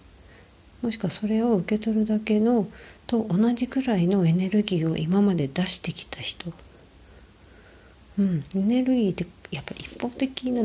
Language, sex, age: Japanese, female, 40-59